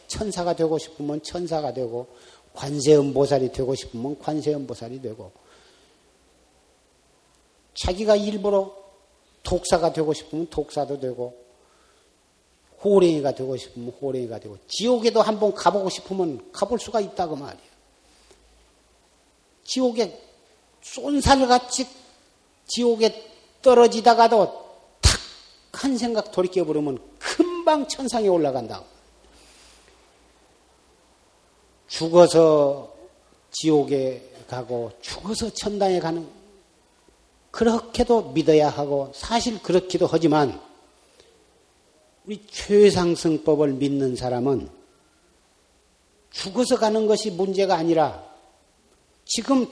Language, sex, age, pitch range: Korean, male, 40-59, 140-225 Hz